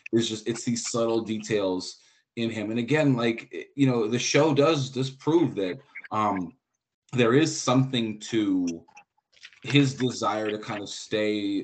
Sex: male